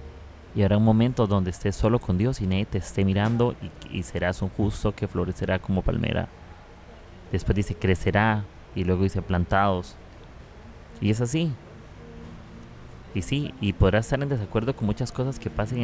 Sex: male